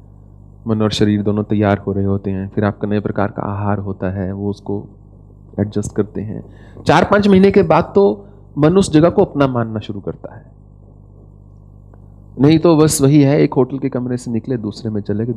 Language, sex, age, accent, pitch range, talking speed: English, male, 30-49, Indian, 100-150 Hz, 205 wpm